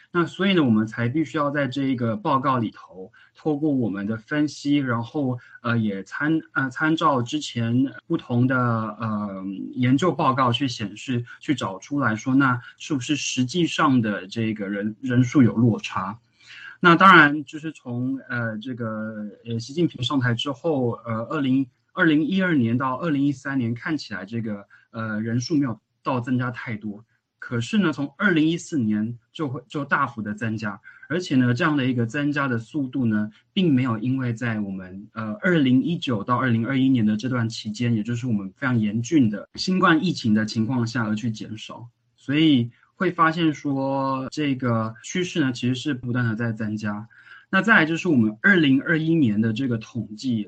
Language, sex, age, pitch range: Chinese, male, 20-39, 115-145 Hz